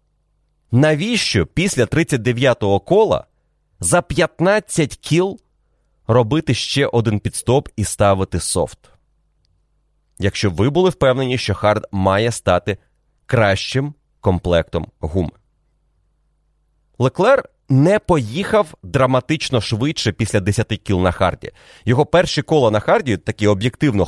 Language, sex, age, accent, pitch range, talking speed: Ukrainian, male, 30-49, native, 110-145 Hz, 105 wpm